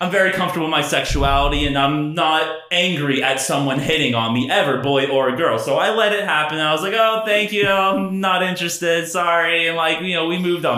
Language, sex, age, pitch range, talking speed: English, male, 30-49, 135-190 Hz, 235 wpm